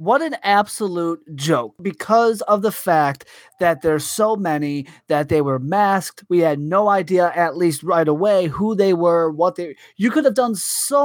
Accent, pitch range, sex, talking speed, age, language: American, 190-245 Hz, male, 185 wpm, 30-49, English